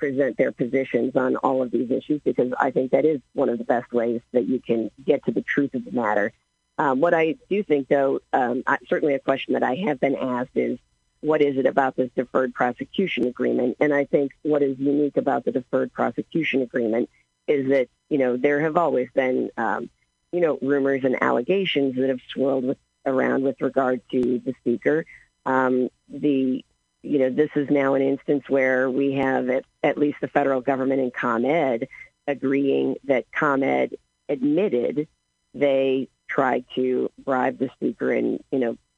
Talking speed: 185 wpm